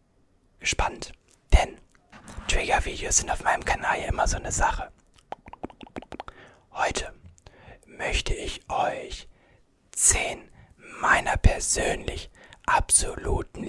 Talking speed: 90 wpm